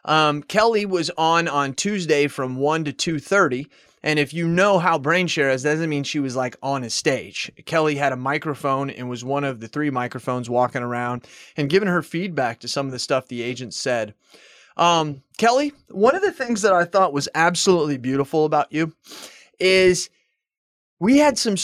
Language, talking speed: English, 195 wpm